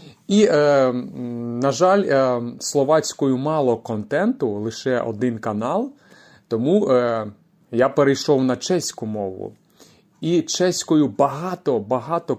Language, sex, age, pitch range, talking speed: Ukrainian, male, 30-49, 125-180 Hz, 85 wpm